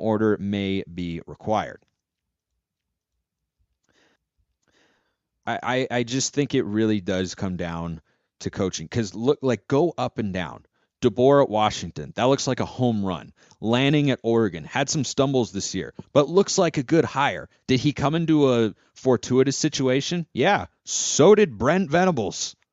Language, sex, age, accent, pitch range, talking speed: English, male, 30-49, American, 110-165 Hz, 155 wpm